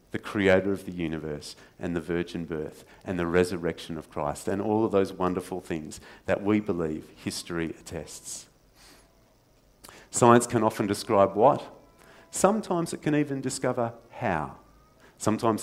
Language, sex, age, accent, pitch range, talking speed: English, male, 40-59, Australian, 90-115 Hz, 140 wpm